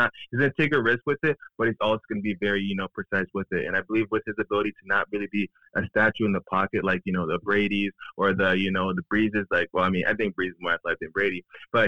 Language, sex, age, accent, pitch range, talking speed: English, male, 20-39, American, 95-110 Hz, 290 wpm